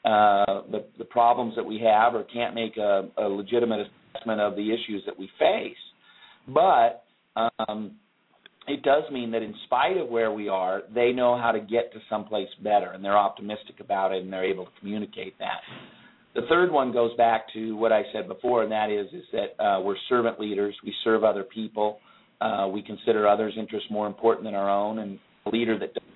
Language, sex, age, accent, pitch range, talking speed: English, male, 50-69, American, 105-120 Hz, 210 wpm